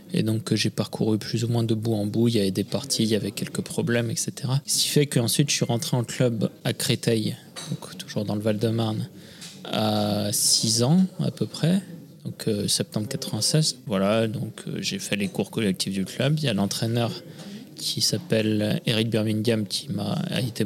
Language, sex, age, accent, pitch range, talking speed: French, male, 20-39, French, 105-145 Hz, 200 wpm